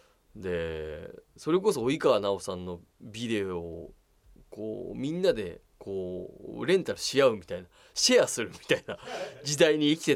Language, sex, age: Japanese, male, 20-39